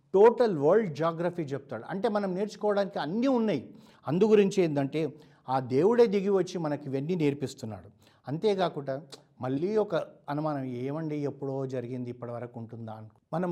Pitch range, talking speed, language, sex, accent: 120-170 Hz, 125 wpm, Telugu, male, native